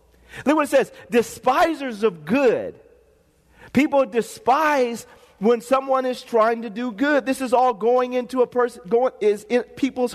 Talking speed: 160 wpm